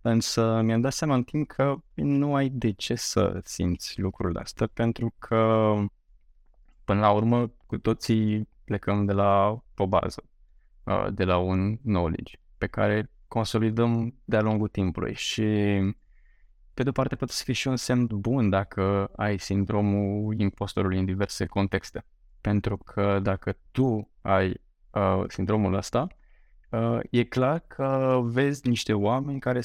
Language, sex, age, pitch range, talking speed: Romanian, male, 20-39, 100-120 Hz, 145 wpm